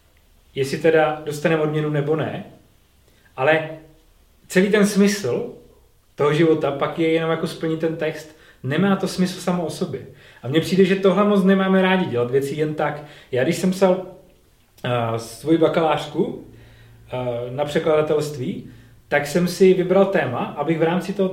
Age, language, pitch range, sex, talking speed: 30-49, Czech, 135-175 Hz, male, 155 wpm